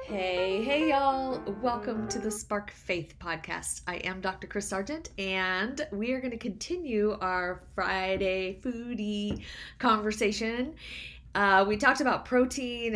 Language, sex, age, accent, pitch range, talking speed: English, female, 30-49, American, 180-230 Hz, 135 wpm